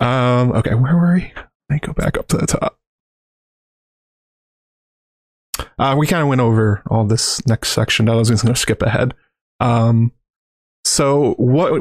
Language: English